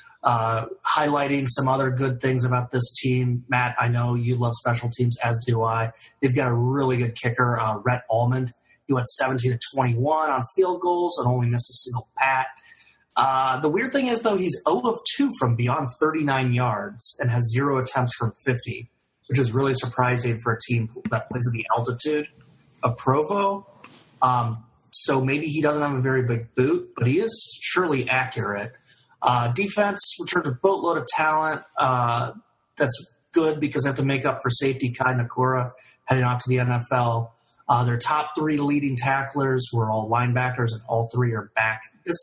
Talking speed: 185 wpm